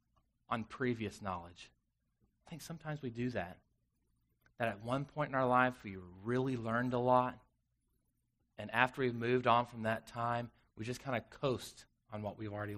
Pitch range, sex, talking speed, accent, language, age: 110-135 Hz, male, 180 wpm, American, English, 30-49